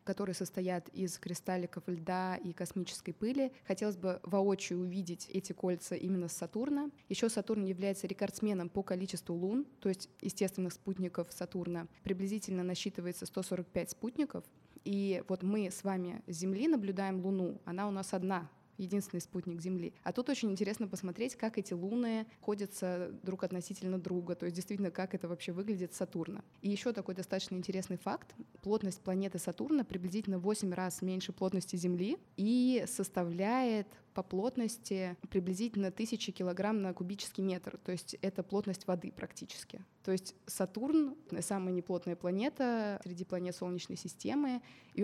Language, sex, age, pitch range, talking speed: Russian, female, 20-39, 180-205 Hz, 150 wpm